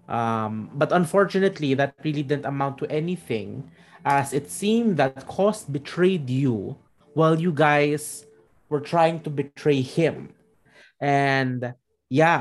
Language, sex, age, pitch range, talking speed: English, male, 20-39, 125-150 Hz, 120 wpm